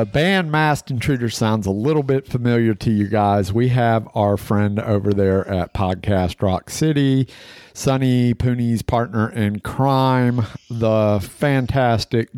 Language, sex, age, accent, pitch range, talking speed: English, male, 50-69, American, 95-115 Hz, 140 wpm